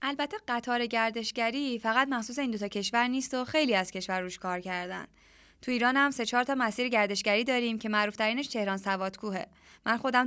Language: Persian